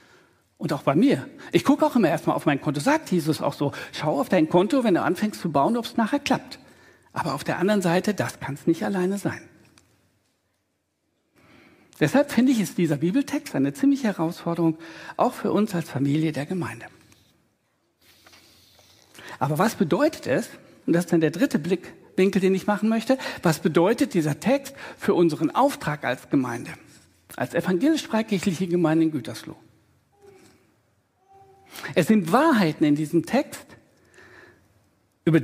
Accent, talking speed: German, 155 wpm